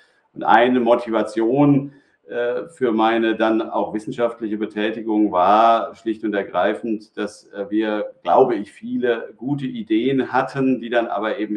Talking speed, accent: 135 wpm, German